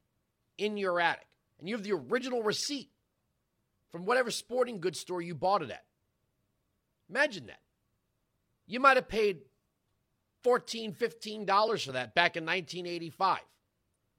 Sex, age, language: male, 40-59, English